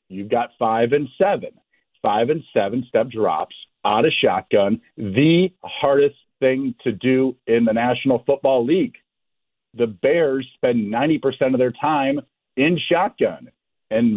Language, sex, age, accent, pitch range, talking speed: English, male, 50-69, American, 120-170 Hz, 140 wpm